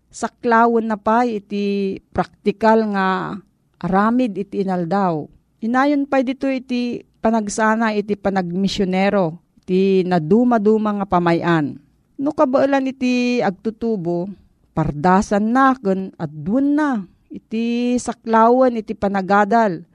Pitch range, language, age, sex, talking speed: 185-235 Hz, Filipino, 40-59, female, 100 wpm